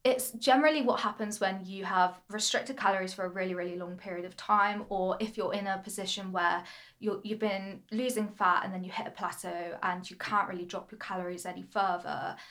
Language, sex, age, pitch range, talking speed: English, female, 10-29, 185-215 Hz, 205 wpm